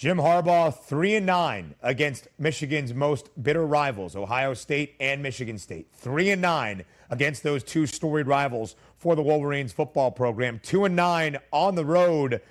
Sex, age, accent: male, 30-49, American